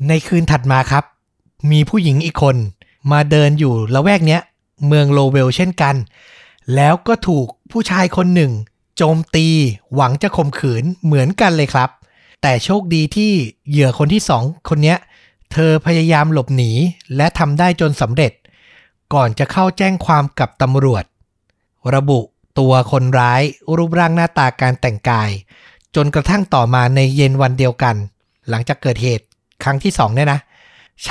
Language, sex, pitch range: Thai, male, 130-170 Hz